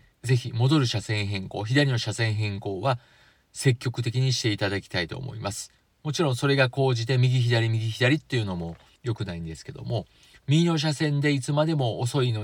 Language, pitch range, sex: Japanese, 105-130 Hz, male